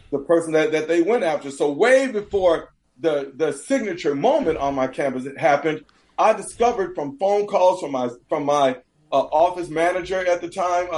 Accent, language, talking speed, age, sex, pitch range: American, English, 185 wpm, 40-59, male, 155-225 Hz